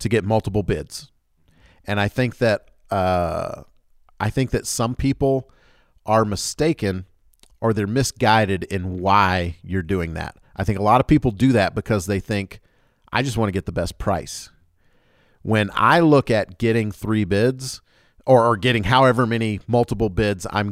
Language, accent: English, American